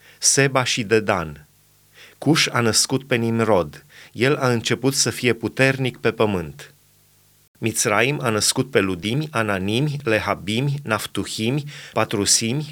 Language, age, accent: Romanian, 30-49, native